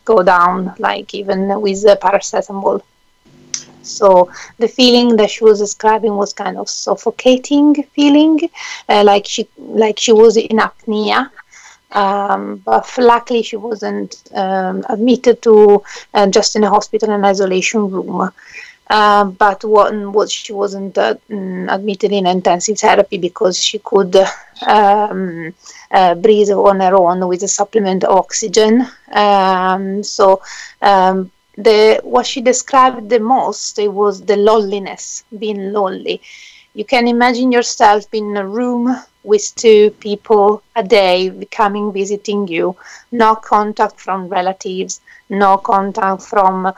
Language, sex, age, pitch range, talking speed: English, female, 30-49, 195-225 Hz, 135 wpm